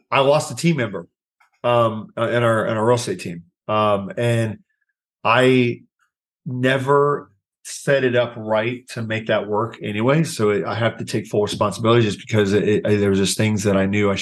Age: 40-59